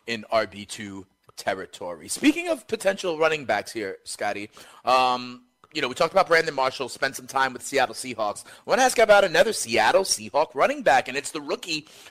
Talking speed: 195 wpm